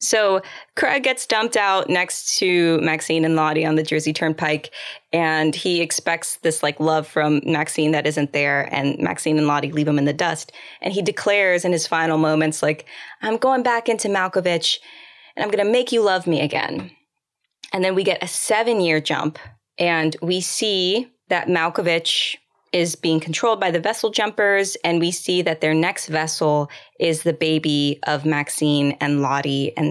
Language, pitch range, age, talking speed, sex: English, 155-200 Hz, 20-39, 180 wpm, female